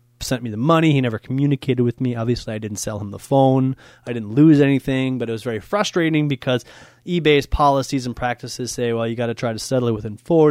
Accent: American